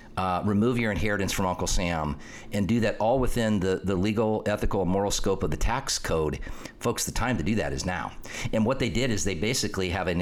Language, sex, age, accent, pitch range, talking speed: English, male, 40-59, American, 95-120 Hz, 230 wpm